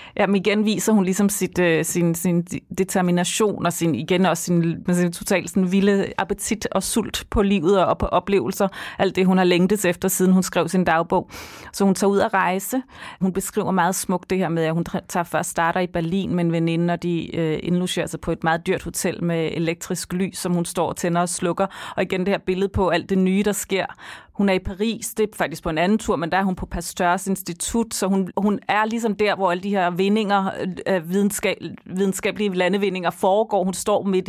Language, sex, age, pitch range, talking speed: Danish, female, 30-49, 170-200 Hz, 220 wpm